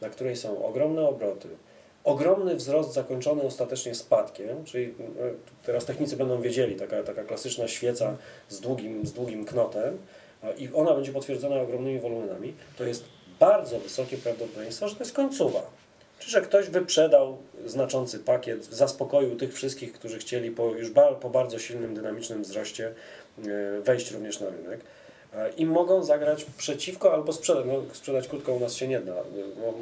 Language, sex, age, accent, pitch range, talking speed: Polish, male, 40-59, native, 120-175 Hz, 150 wpm